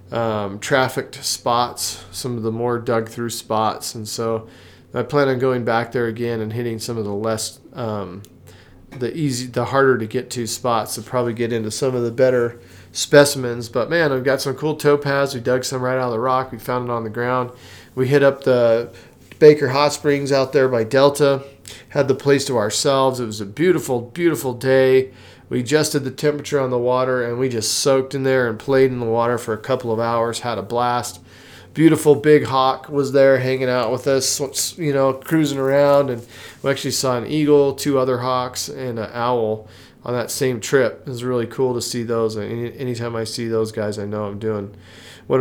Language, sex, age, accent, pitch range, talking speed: English, male, 40-59, American, 115-135 Hz, 210 wpm